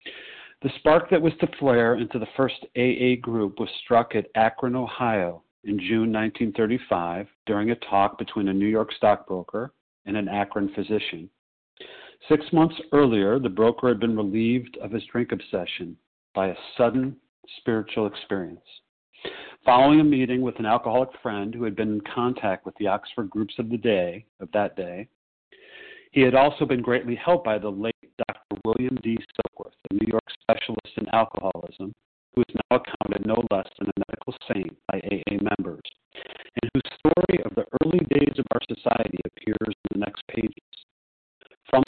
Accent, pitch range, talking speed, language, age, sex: American, 105-130 Hz, 170 wpm, English, 50-69, male